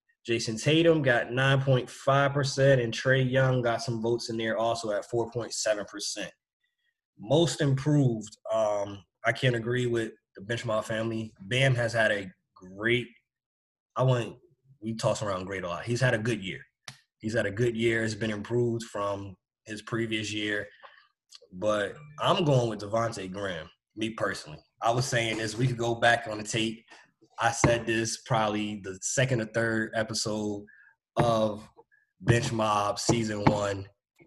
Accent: American